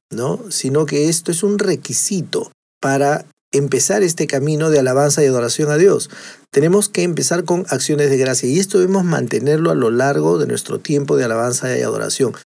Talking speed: 175 wpm